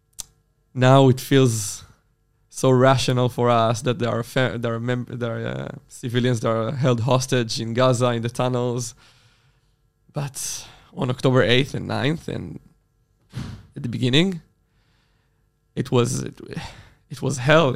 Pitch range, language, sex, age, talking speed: 120-140 Hz, Hebrew, male, 20-39, 145 wpm